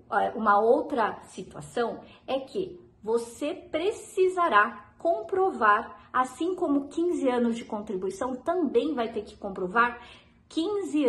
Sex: female